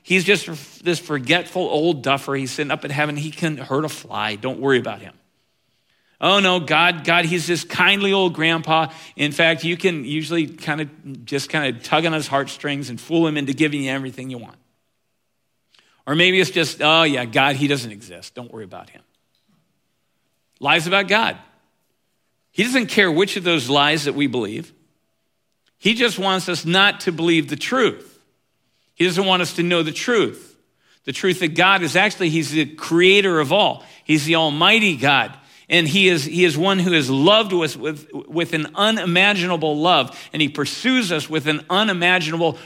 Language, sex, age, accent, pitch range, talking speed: English, male, 50-69, American, 145-180 Hz, 190 wpm